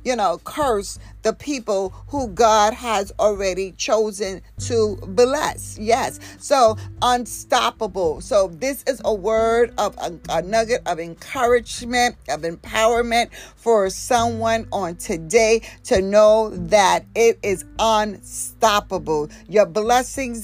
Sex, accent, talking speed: female, American, 115 wpm